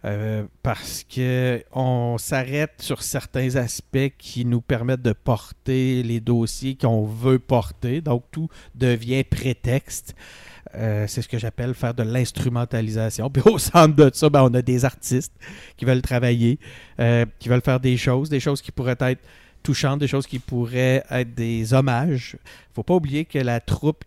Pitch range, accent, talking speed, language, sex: 110-135 Hz, Canadian, 170 wpm, French, male